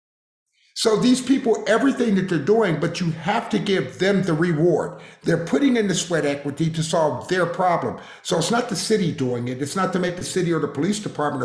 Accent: American